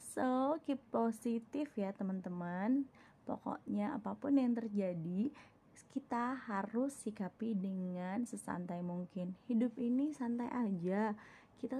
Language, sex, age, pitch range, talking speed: Indonesian, female, 20-39, 195-260 Hz, 100 wpm